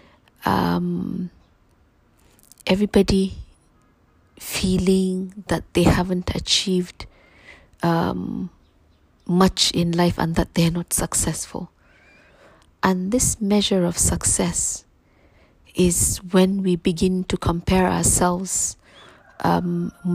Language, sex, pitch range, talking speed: English, female, 175-195 Hz, 85 wpm